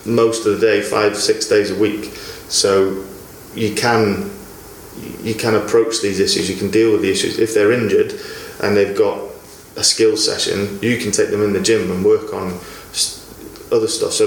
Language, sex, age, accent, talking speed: English, male, 20-39, British, 190 wpm